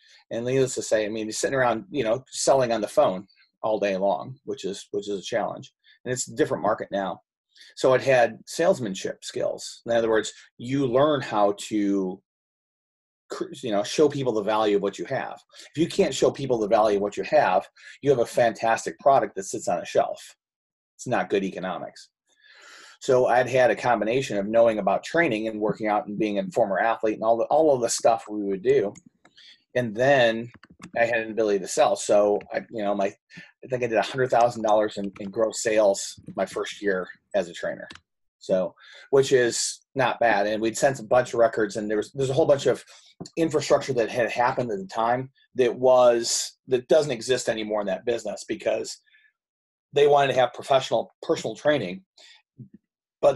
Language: English